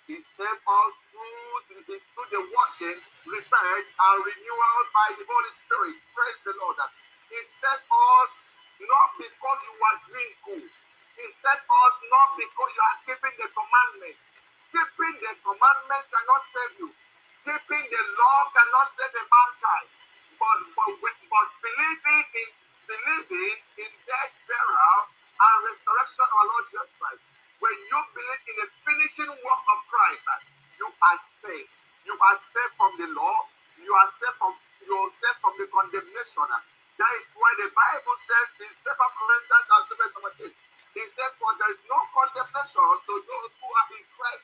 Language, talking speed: English, 160 wpm